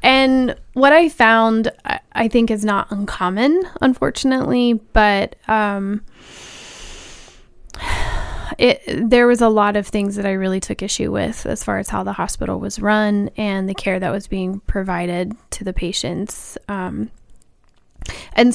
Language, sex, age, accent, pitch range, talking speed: English, female, 20-39, American, 190-225 Hz, 140 wpm